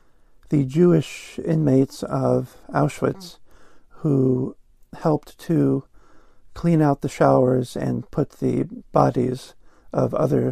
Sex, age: male, 50-69